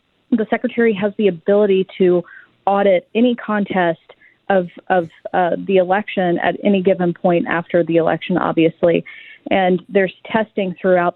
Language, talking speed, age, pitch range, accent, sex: English, 140 wpm, 40-59, 170-210 Hz, American, female